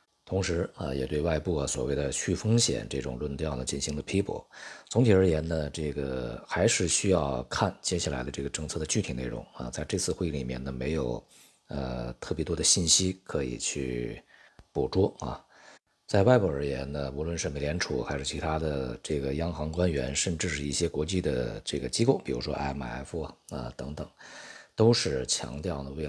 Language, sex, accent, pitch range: Chinese, male, native, 65-90 Hz